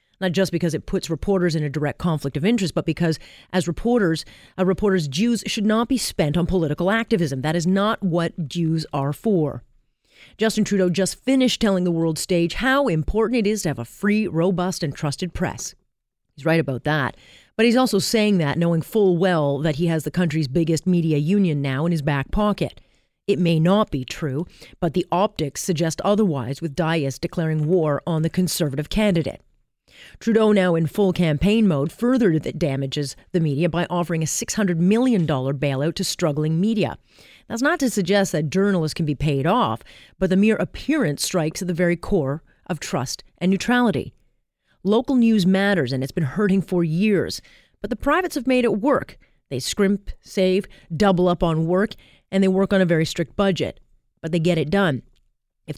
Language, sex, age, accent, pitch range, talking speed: English, female, 40-59, American, 160-200 Hz, 190 wpm